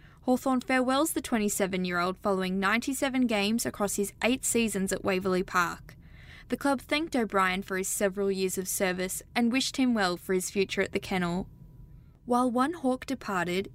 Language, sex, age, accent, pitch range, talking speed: English, female, 10-29, Australian, 195-255 Hz, 165 wpm